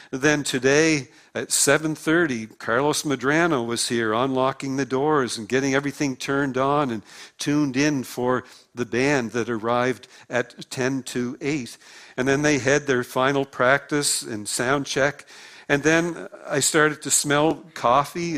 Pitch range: 130-145 Hz